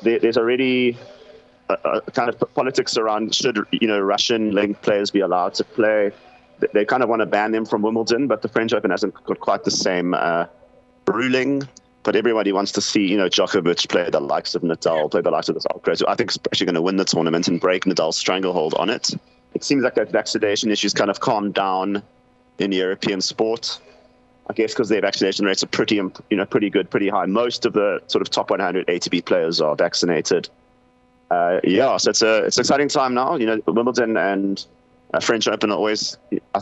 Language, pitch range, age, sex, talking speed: English, 100-120 Hz, 30-49, male, 215 wpm